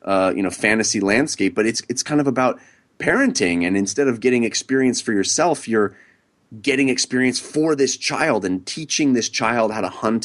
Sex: male